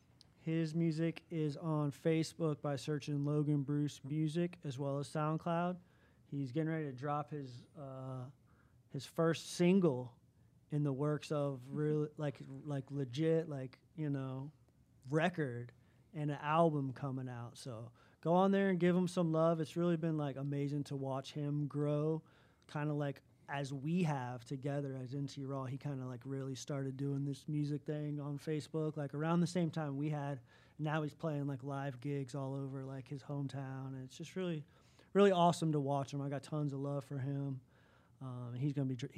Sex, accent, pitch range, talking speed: male, American, 135-155 Hz, 180 wpm